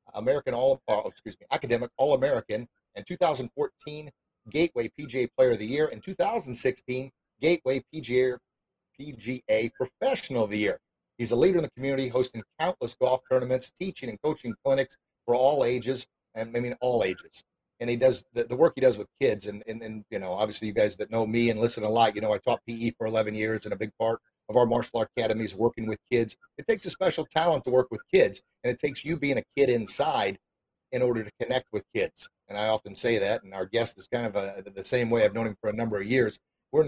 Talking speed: 225 wpm